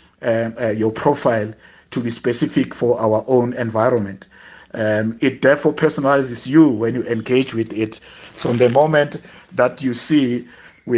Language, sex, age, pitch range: English, male, 50-69, 120-150 Hz